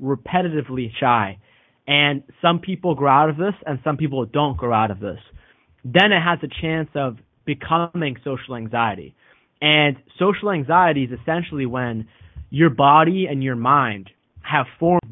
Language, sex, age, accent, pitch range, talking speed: English, male, 20-39, American, 125-155 Hz, 155 wpm